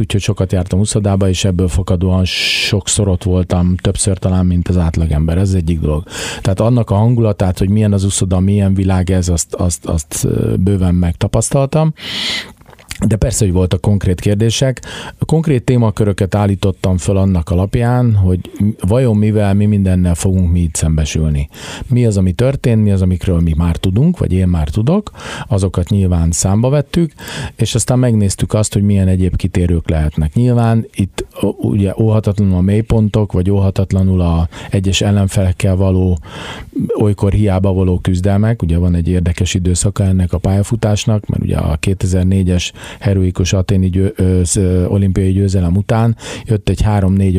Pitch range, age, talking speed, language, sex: 90-110 Hz, 40-59, 155 wpm, Hungarian, male